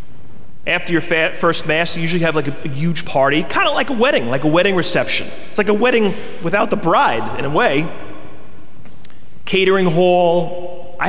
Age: 30-49